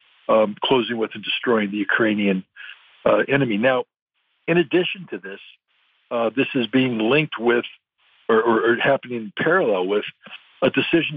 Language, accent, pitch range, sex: English, American, 115-135 Hz, male